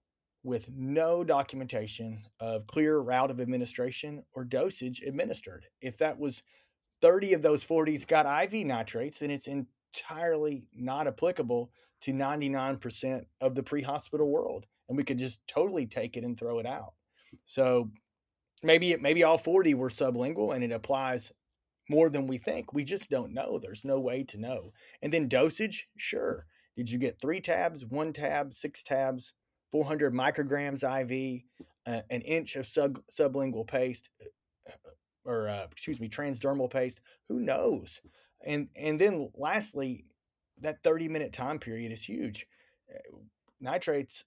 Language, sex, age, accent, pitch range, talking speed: English, male, 30-49, American, 120-150 Hz, 150 wpm